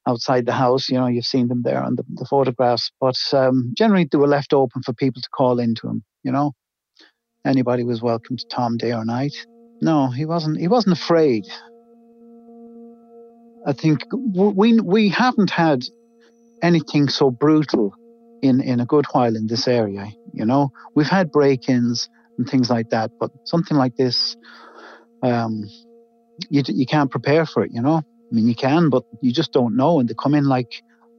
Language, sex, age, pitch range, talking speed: English, male, 50-69, 125-170 Hz, 185 wpm